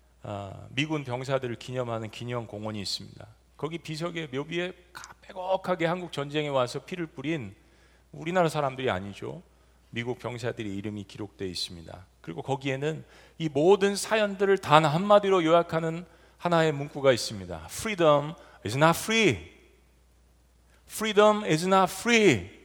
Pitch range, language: 125-195 Hz, Korean